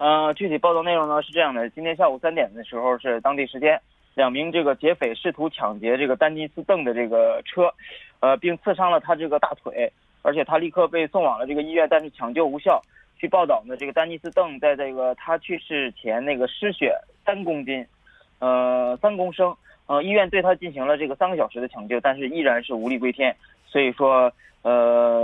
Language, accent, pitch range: Korean, Chinese, 125-160 Hz